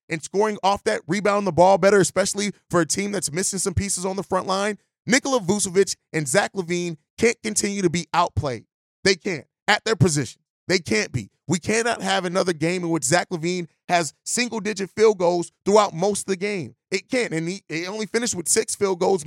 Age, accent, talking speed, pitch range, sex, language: 30-49, American, 205 wpm, 170-200 Hz, male, English